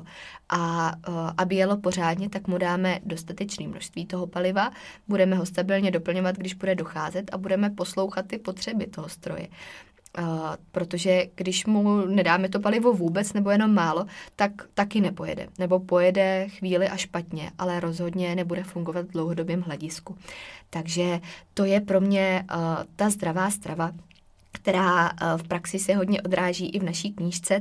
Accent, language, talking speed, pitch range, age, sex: native, Czech, 150 wpm, 175-195 Hz, 20-39, female